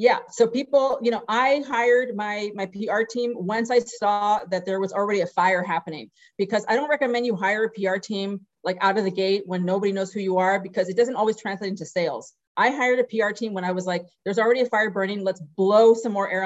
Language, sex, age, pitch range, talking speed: English, female, 30-49, 180-220 Hz, 245 wpm